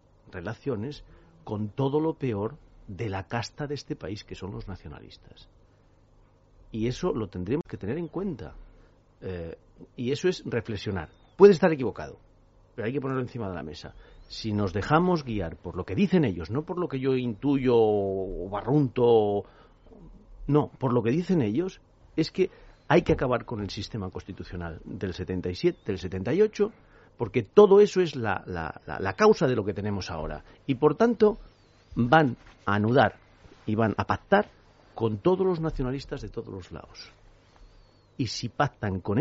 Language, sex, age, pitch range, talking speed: Spanish, male, 40-59, 95-145 Hz, 170 wpm